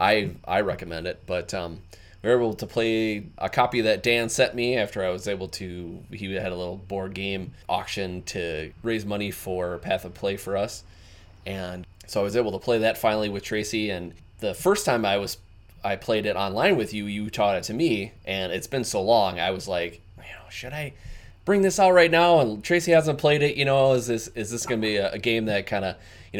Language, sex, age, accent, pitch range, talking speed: English, male, 20-39, American, 95-110 Hz, 230 wpm